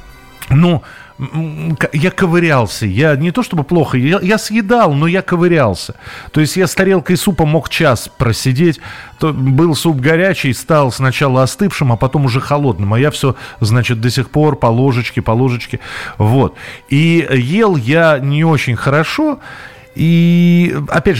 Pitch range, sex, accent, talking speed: 120-165 Hz, male, native, 150 wpm